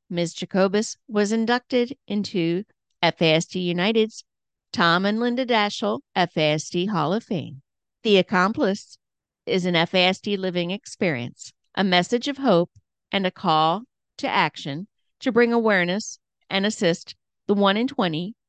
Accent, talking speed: American, 130 wpm